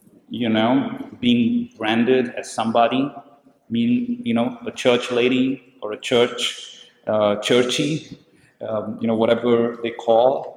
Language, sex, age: English, male, 40-59